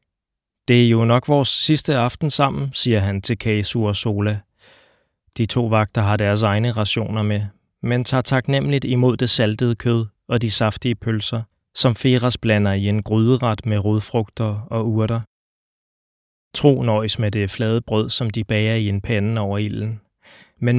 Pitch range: 110-125 Hz